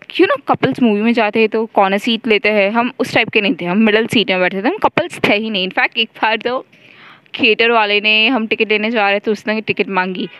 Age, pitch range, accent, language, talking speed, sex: 20-39, 185-230 Hz, native, Hindi, 260 wpm, female